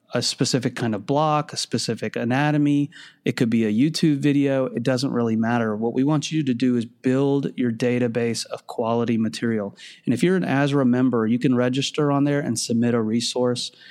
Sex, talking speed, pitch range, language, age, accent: male, 200 wpm, 120-140 Hz, English, 30-49, American